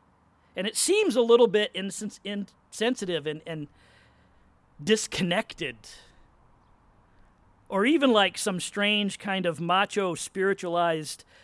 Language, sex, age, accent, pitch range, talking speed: English, male, 40-59, American, 145-210 Hz, 100 wpm